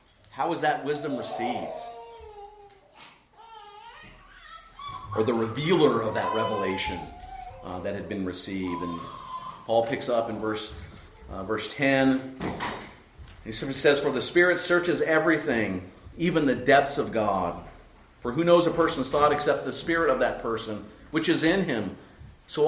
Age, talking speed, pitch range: 40-59, 150 wpm, 110-175 Hz